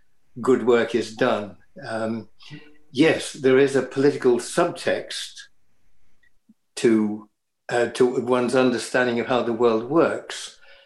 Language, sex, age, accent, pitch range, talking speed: English, male, 60-79, British, 120-145 Hz, 115 wpm